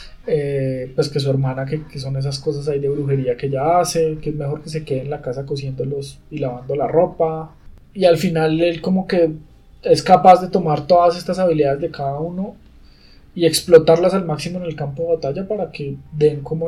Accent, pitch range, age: Colombian, 140-175 Hz, 20-39